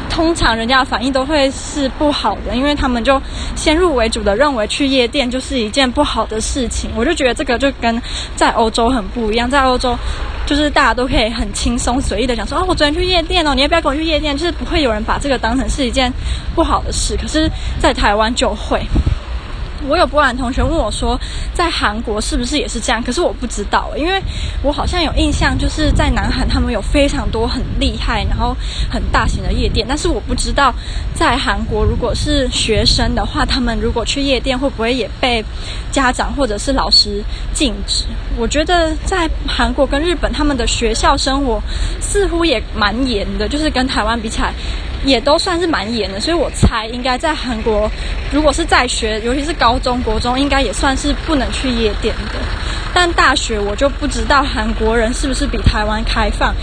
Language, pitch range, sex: Chinese, 230-295 Hz, female